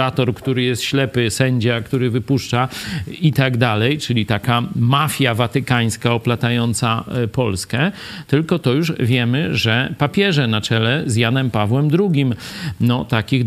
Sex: male